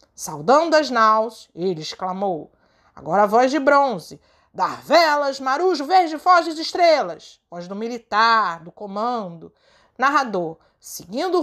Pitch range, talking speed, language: 220-345 Hz, 125 wpm, Portuguese